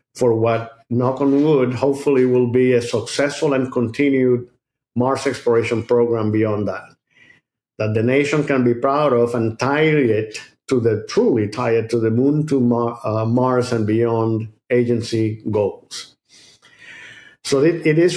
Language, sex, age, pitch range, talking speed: English, male, 50-69, 115-140 Hz, 150 wpm